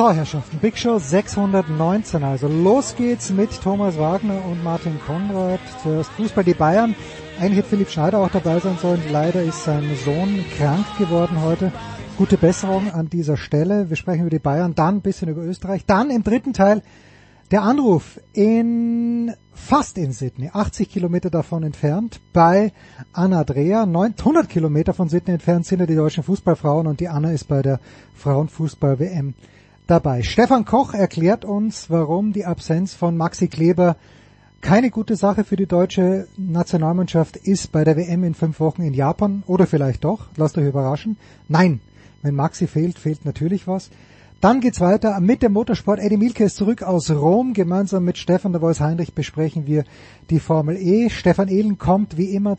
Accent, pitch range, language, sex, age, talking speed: German, 155-200 Hz, English, male, 30-49, 170 wpm